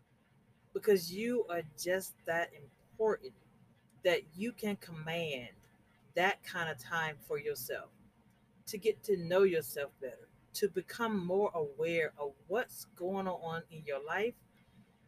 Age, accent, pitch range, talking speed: 40-59, American, 165-230 Hz, 130 wpm